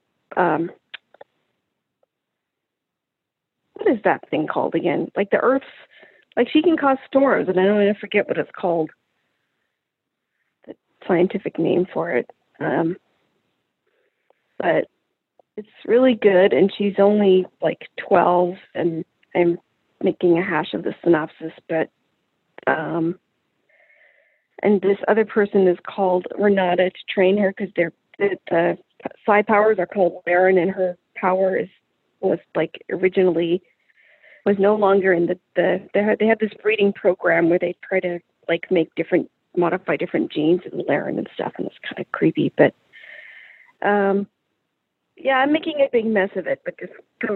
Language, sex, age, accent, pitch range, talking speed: English, female, 40-59, American, 180-235 Hz, 150 wpm